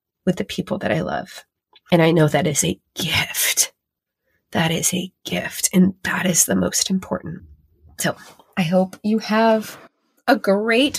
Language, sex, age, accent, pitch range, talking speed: English, female, 20-39, American, 170-235 Hz, 165 wpm